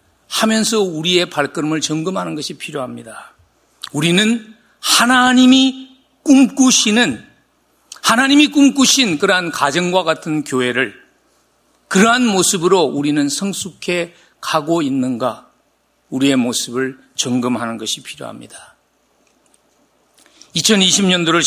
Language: English